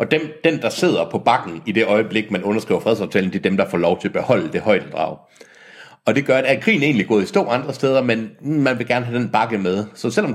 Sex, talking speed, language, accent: male, 280 wpm, Danish, native